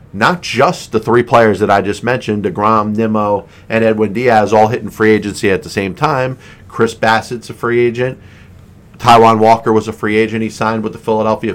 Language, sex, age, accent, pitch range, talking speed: English, male, 40-59, American, 110-125 Hz, 195 wpm